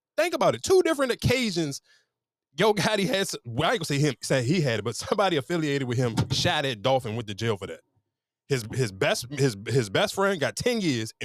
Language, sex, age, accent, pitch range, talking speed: English, male, 20-39, American, 135-225 Hz, 230 wpm